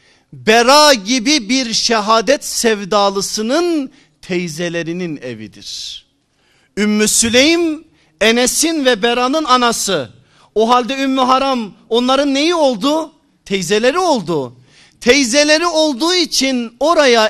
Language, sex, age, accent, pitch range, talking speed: Turkish, male, 50-69, native, 180-255 Hz, 90 wpm